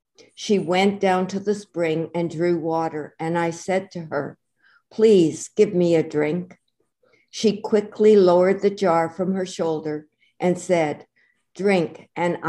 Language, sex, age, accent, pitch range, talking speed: English, female, 60-79, American, 160-190 Hz, 150 wpm